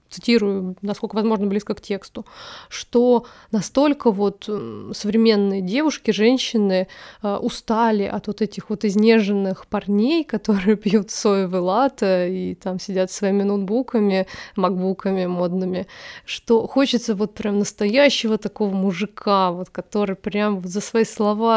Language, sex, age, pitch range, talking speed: Russian, female, 20-39, 195-240 Hz, 120 wpm